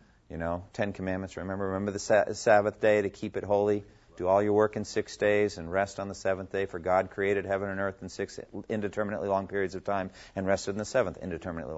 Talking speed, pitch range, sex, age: 235 wpm, 85-100 Hz, male, 40-59